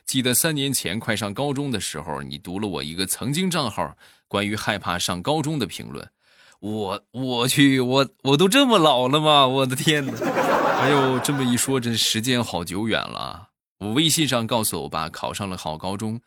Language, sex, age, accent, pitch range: Chinese, male, 20-39, native, 90-130 Hz